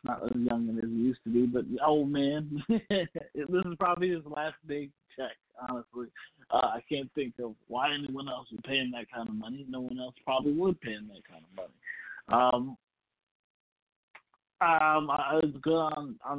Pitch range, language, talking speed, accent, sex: 115-140 Hz, English, 185 wpm, American, male